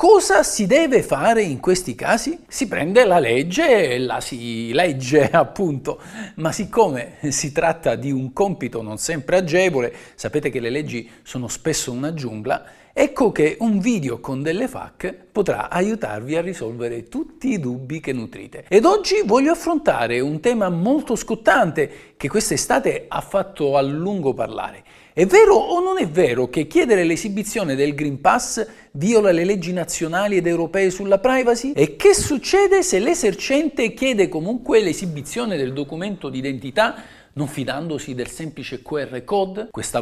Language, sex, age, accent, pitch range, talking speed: Italian, male, 50-69, native, 140-220 Hz, 155 wpm